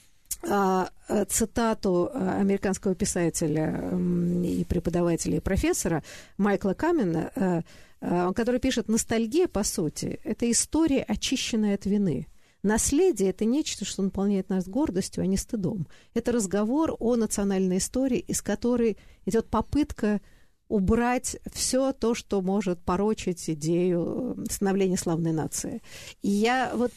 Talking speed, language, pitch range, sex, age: 115 wpm, Russian, 170-225 Hz, female, 50-69